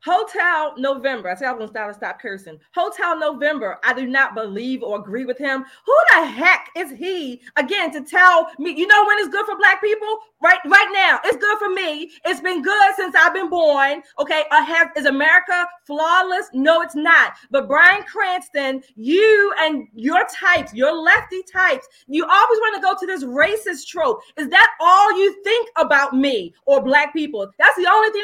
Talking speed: 195 wpm